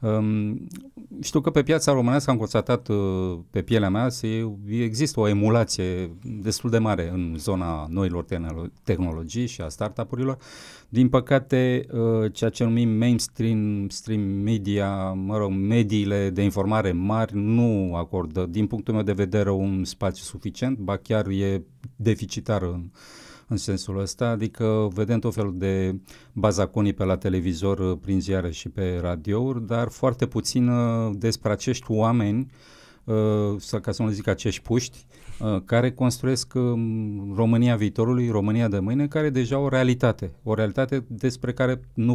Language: Romanian